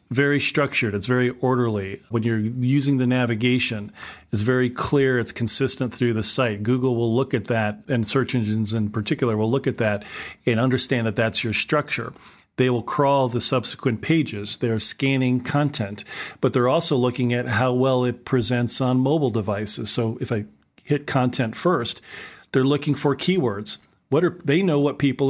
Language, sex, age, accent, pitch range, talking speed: English, male, 40-59, American, 115-140 Hz, 175 wpm